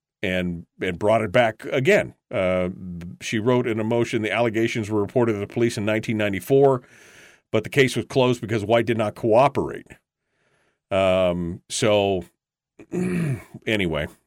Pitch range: 100-135 Hz